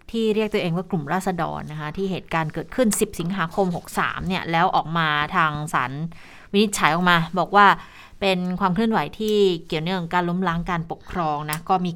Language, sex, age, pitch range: Thai, female, 20-39, 170-215 Hz